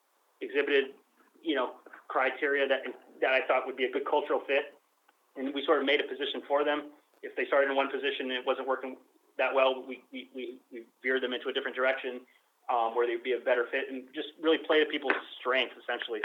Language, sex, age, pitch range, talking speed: English, male, 30-49, 125-160 Hz, 220 wpm